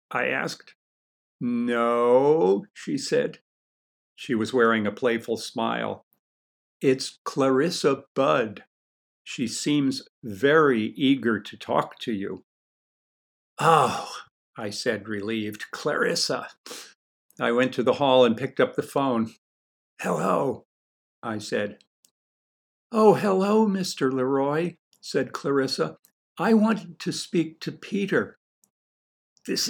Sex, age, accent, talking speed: male, 60-79, American, 105 wpm